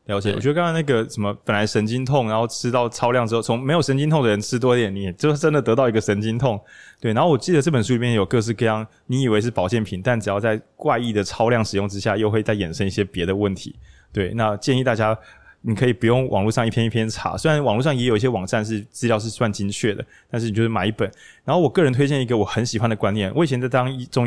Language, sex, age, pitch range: Chinese, male, 20-39, 100-125 Hz